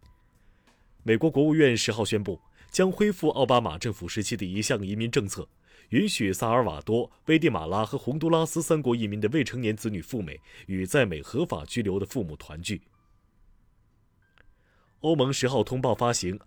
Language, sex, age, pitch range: Chinese, male, 30-49, 100-140 Hz